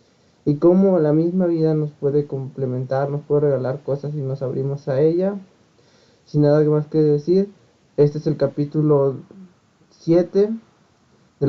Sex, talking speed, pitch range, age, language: male, 145 wpm, 135-165 Hz, 20-39, Spanish